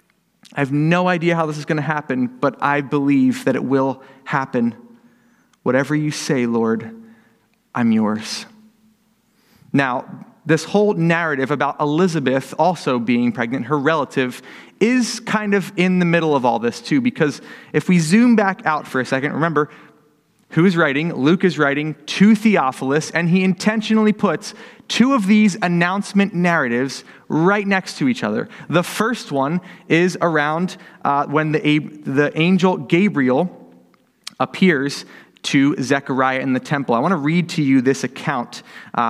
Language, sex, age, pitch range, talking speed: English, male, 30-49, 140-195 Hz, 155 wpm